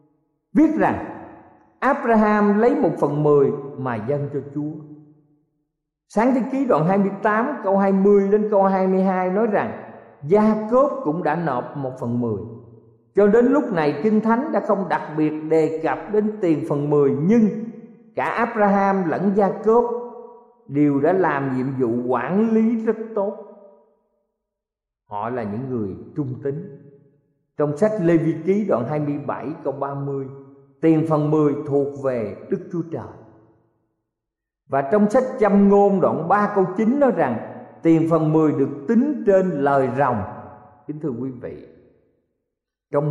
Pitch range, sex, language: 135-200 Hz, male, Vietnamese